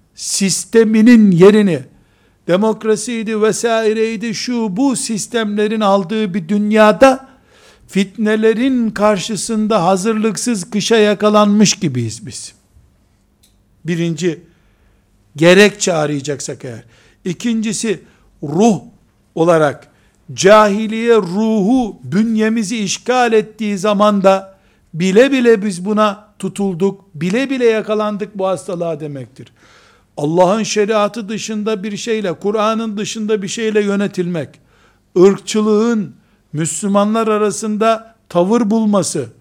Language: Turkish